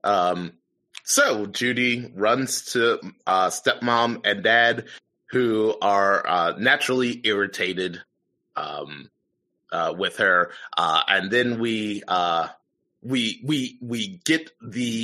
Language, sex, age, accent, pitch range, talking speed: English, male, 30-49, American, 95-125 Hz, 110 wpm